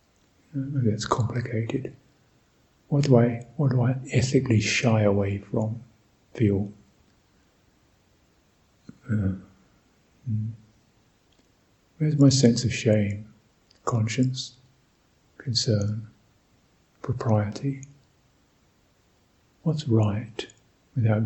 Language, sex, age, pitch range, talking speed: English, male, 50-69, 110-130 Hz, 70 wpm